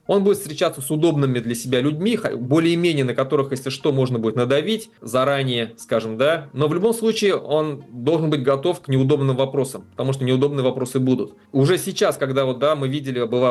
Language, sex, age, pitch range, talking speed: Russian, male, 20-39, 120-155 Hz, 190 wpm